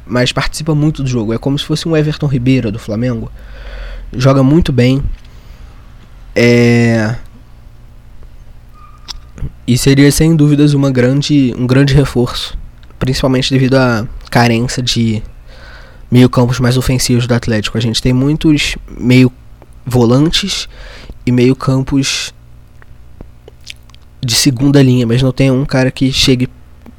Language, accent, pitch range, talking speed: Portuguese, Brazilian, 105-140 Hz, 120 wpm